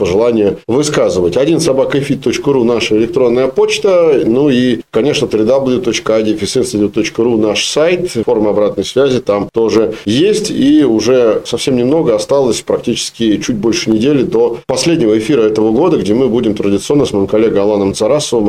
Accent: native